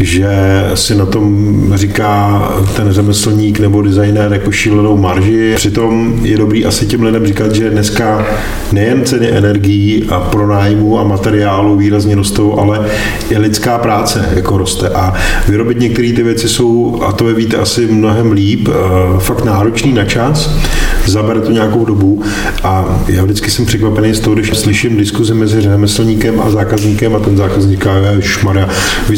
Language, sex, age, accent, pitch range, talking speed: Czech, male, 40-59, native, 100-115 Hz, 160 wpm